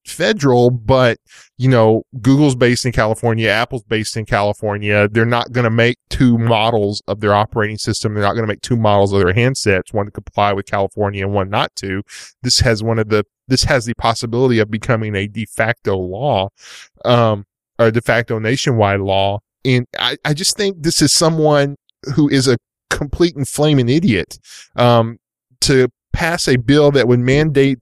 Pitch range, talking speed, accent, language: 110-130 Hz, 185 wpm, American, English